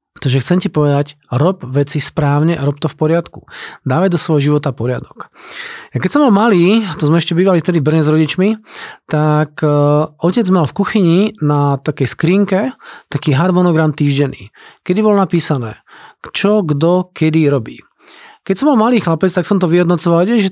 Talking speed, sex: 175 wpm, male